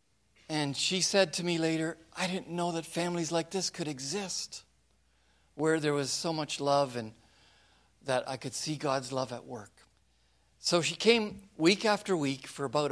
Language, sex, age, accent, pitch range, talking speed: English, male, 50-69, American, 125-175 Hz, 175 wpm